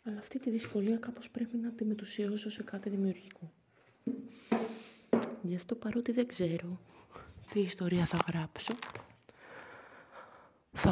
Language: Greek